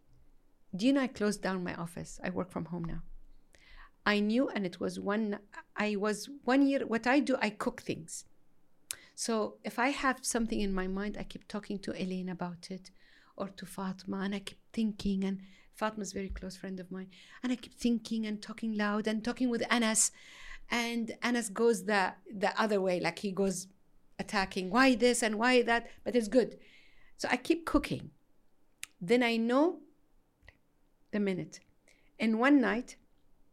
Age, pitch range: 50-69, 175-225 Hz